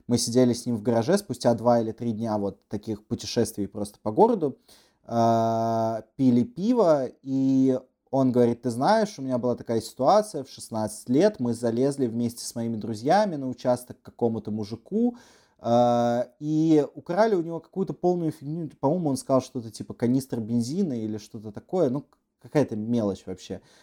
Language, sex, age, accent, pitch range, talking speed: Russian, male, 20-39, native, 110-145 Hz, 160 wpm